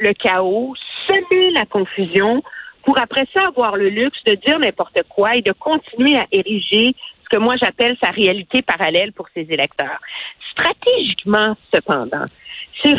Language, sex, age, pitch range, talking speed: French, female, 50-69, 205-330 Hz, 155 wpm